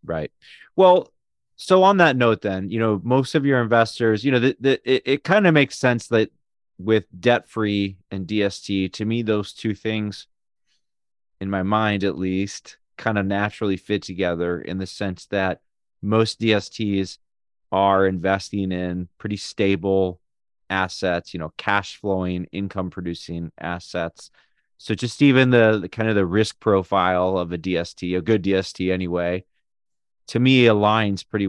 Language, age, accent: English, 30-49, American